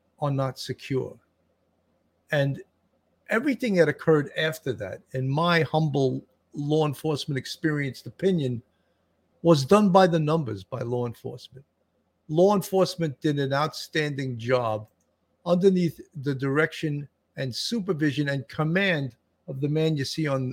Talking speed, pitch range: 125 wpm, 130-170 Hz